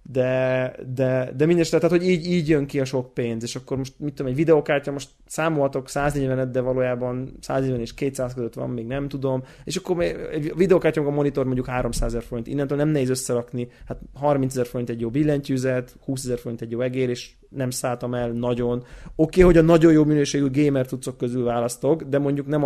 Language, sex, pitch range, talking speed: Hungarian, male, 125-145 Hz, 210 wpm